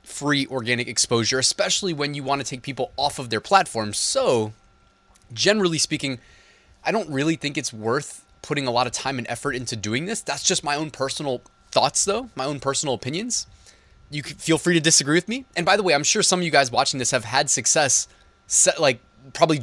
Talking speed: 215 wpm